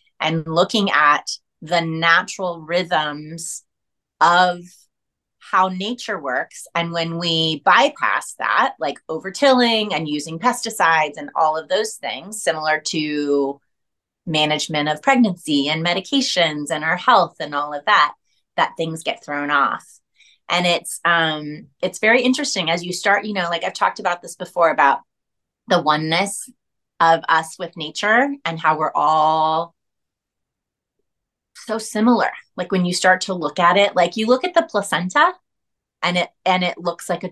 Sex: female